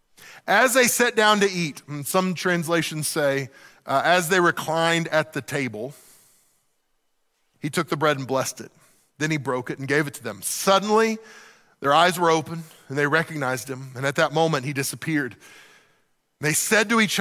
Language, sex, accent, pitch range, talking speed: English, male, American, 150-215 Hz, 180 wpm